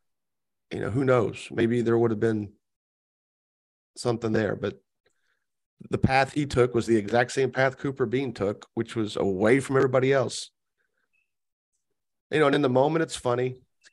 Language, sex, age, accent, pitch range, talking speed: English, male, 40-59, American, 110-135 Hz, 170 wpm